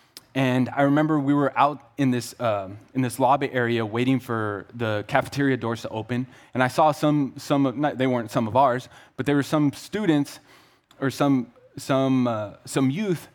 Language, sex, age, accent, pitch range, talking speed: English, male, 20-39, American, 125-155 Hz, 195 wpm